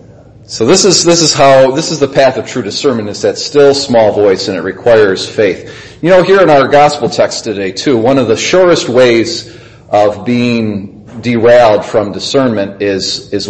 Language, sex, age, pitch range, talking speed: English, male, 40-59, 110-150 Hz, 190 wpm